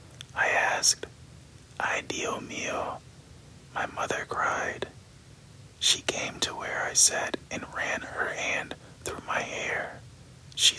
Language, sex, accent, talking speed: English, male, American, 120 wpm